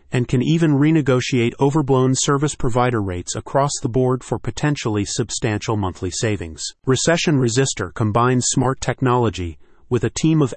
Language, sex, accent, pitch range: English, male, American, 110-140 Hz